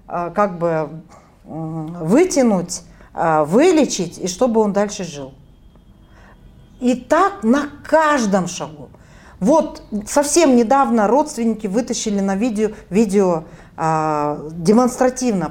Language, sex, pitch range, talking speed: Russian, female, 195-270 Hz, 90 wpm